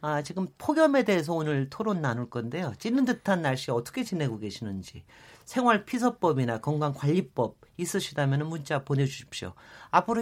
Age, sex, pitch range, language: 40-59, male, 135-210 Hz, Korean